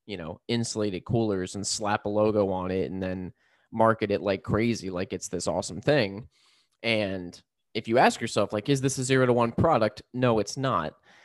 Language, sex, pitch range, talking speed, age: English, male, 105-125 Hz, 195 wpm, 20-39